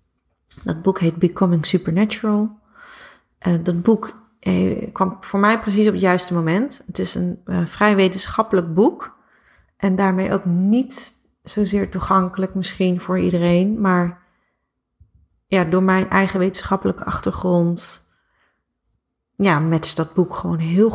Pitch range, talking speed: 175-210 Hz, 125 wpm